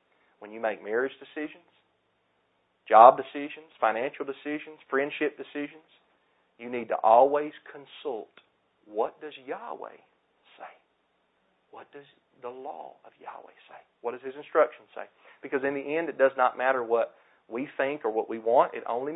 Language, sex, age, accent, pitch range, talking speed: English, male, 40-59, American, 115-150 Hz, 155 wpm